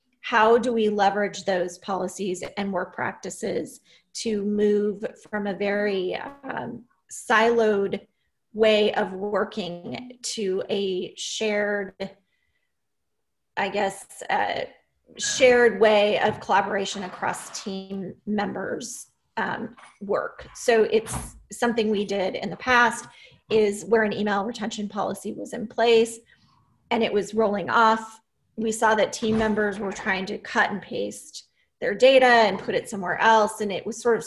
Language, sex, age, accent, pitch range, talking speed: English, female, 30-49, American, 195-225 Hz, 140 wpm